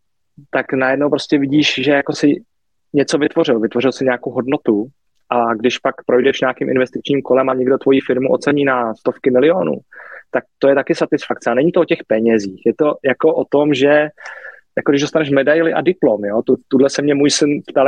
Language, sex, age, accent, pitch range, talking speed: Czech, male, 20-39, native, 125-145 Hz, 190 wpm